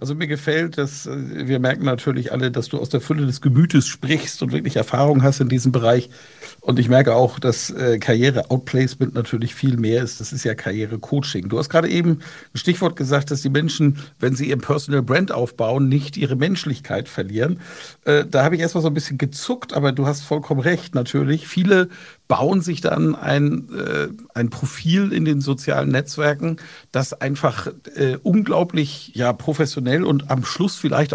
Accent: German